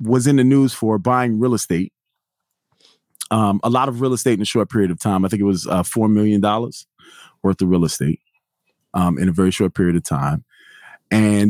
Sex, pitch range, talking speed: male, 90-110 Hz, 210 wpm